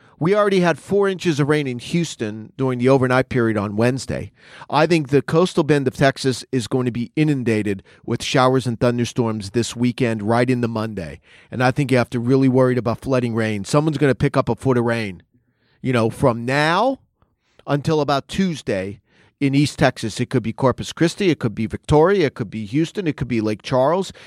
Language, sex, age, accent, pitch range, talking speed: English, male, 40-59, American, 120-150 Hz, 210 wpm